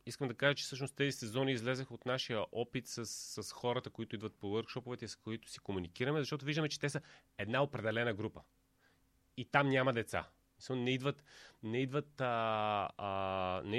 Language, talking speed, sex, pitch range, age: Bulgarian, 180 wpm, male, 110-135 Hz, 30-49